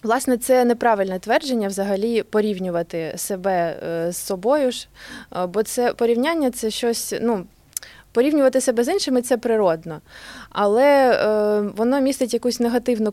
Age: 20-39